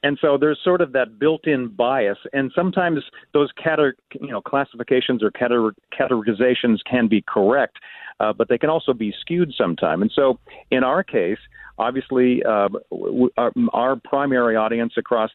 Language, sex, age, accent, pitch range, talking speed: English, male, 50-69, American, 110-135 Hz, 155 wpm